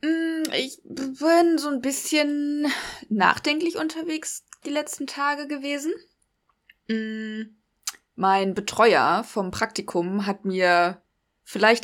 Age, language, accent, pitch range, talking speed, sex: 20-39, German, German, 210-285 Hz, 90 wpm, female